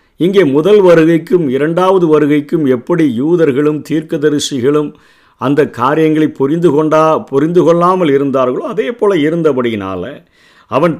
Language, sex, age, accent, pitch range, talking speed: Tamil, male, 50-69, native, 135-165 Hz, 110 wpm